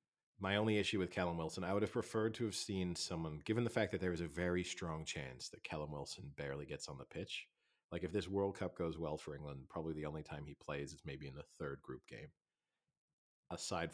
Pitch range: 75-90 Hz